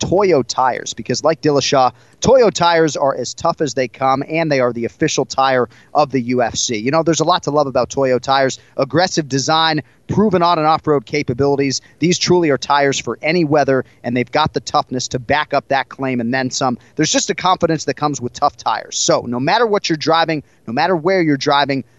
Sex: male